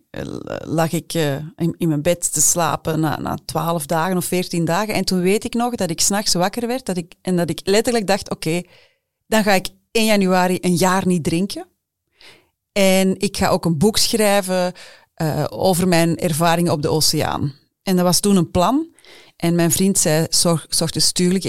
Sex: female